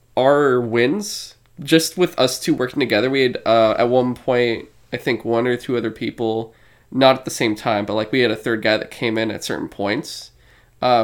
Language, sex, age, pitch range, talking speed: English, male, 20-39, 115-135 Hz, 215 wpm